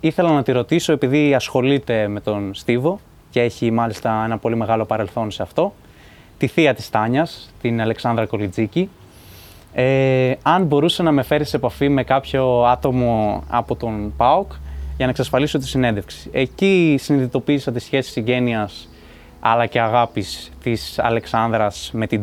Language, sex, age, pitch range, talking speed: Greek, male, 20-39, 110-135 Hz, 150 wpm